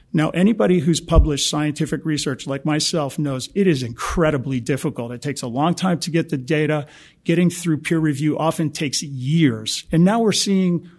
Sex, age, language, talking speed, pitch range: male, 50-69, English, 180 wpm, 145-175 Hz